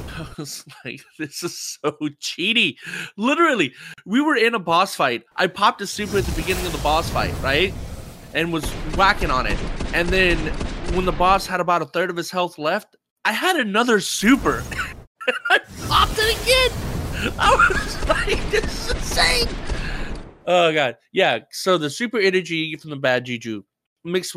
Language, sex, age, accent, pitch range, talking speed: English, male, 20-39, American, 140-190 Hz, 175 wpm